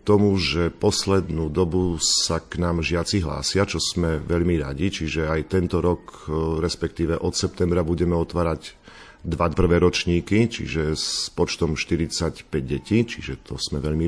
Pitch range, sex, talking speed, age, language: 75-90 Hz, male, 145 wpm, 50-69, Slovak